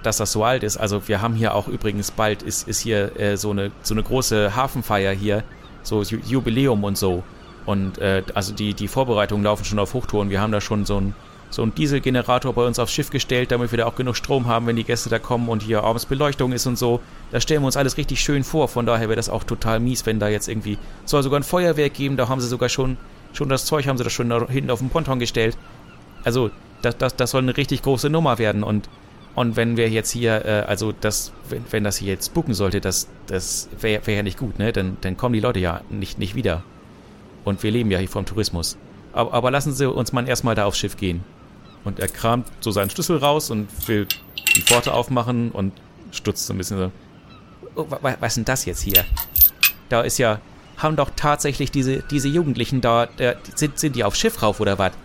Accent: German